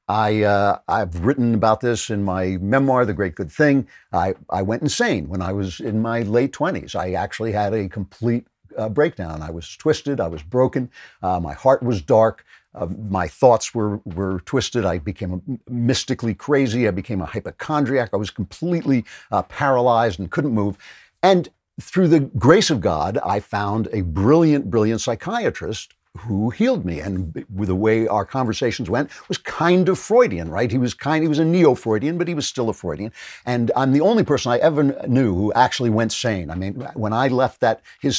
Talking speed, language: 195 wpm, English